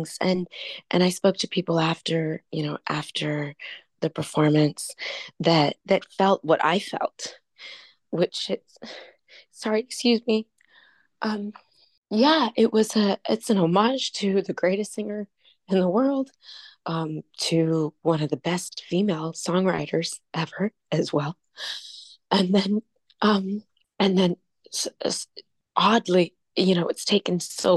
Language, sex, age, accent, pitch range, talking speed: English, female, 20-39, American, 165-210 Hz, 130 wpm